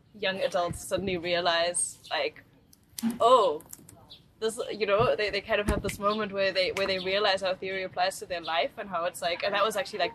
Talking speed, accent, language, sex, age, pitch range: 215 wpm, German, English, female, 10-29, 180-215 Hz